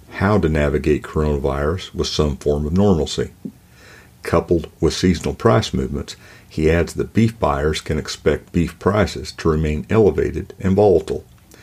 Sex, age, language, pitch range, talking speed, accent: male, 50-69, English, 75-95 Hz, 145 wpm, American